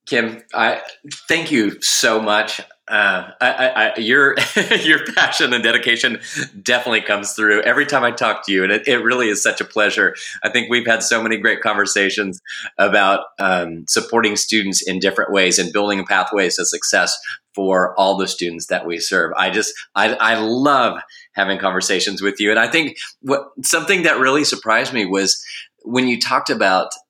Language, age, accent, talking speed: English, 30-49, American, 180 wpm